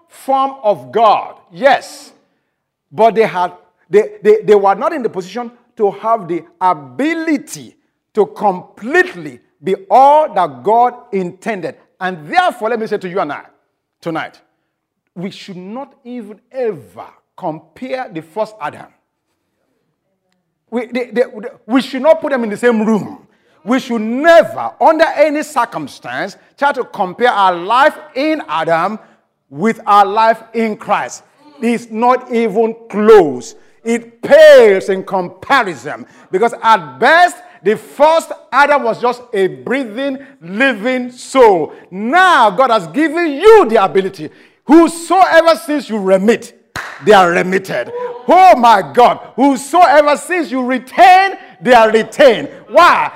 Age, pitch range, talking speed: 50-69, 210-305 Hz, 135 wpm